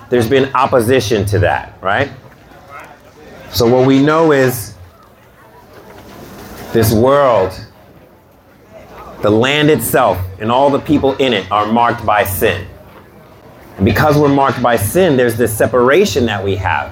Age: 30-49